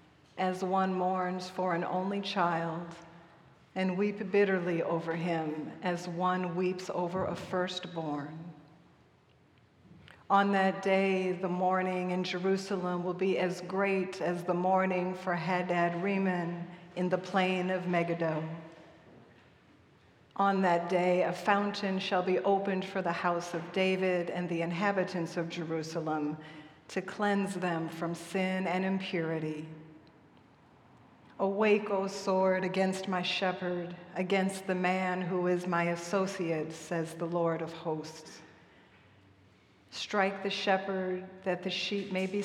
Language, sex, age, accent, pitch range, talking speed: English, female, 50-69, American, 170-190 Hz, 130 wpm